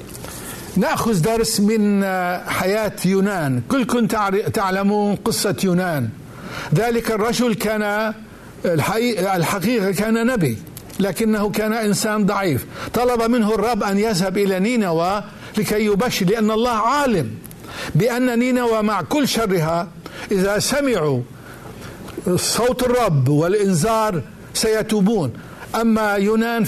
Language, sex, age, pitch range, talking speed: Arabic, male, 60-79, 180-230 Hz, 100 wpm